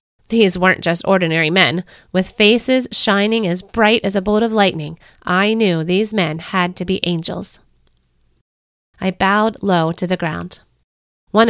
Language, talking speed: English, 155 wpm